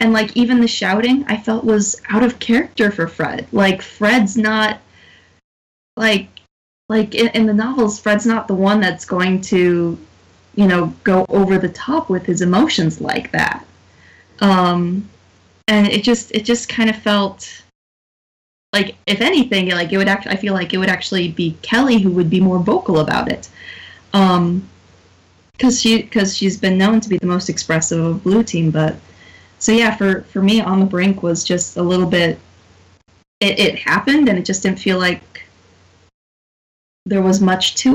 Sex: female